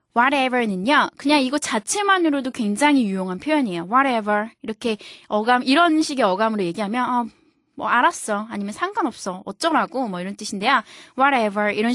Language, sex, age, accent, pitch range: Korean, female, 20-39, native, 215-300 Hz